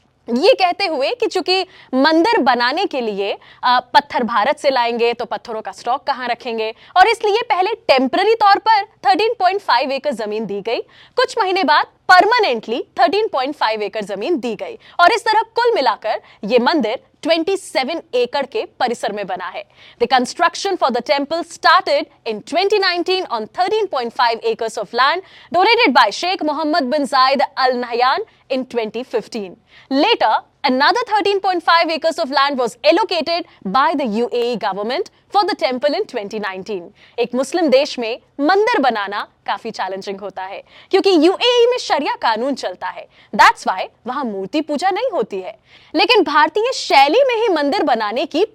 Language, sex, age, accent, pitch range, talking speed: Hindi, female, 20-39, native, 240-385 Hz, 115 wpm